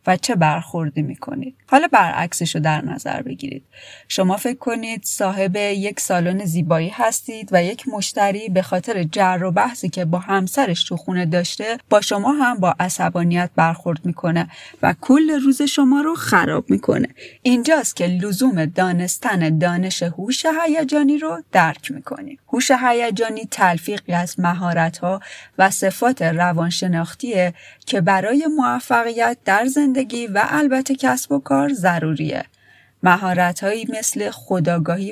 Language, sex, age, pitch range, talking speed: Persian, female, 30-49, 175-245 Hz, 135 wpm